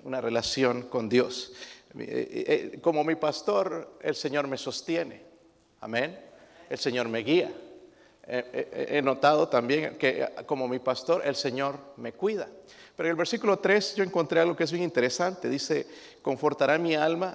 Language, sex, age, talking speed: Spanish, male, 50-69, 150 wpm